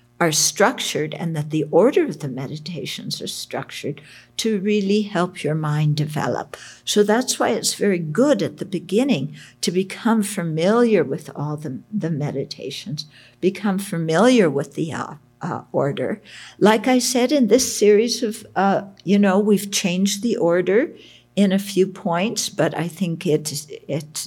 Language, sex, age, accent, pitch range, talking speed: English, female, 60-79, American, 155-215 Hz, 160 wpm